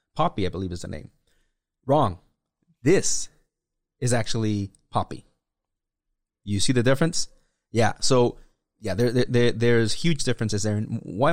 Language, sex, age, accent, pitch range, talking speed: English, male, 30-49, American, 100-140 Hz, 145 wpm